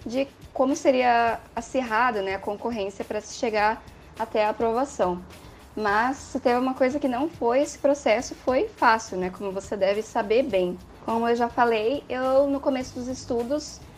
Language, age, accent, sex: Portuguese, 10-29, Brazilian, female